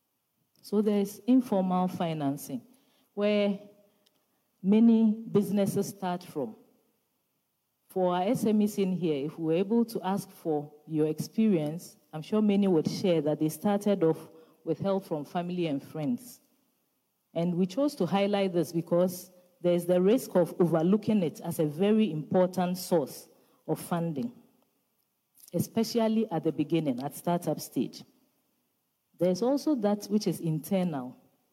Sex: female